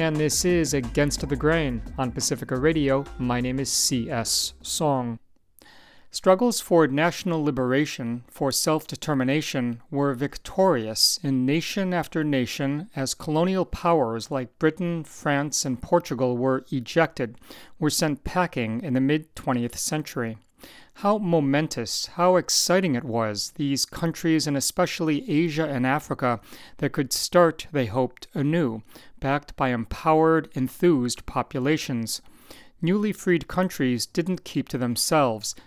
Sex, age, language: male, 40-59, English